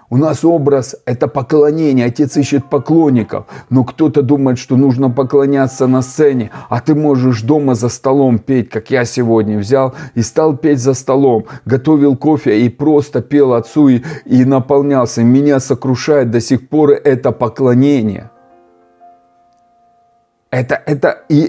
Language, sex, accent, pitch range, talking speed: Russian, male, native, 120-150 Hz, 135 wpm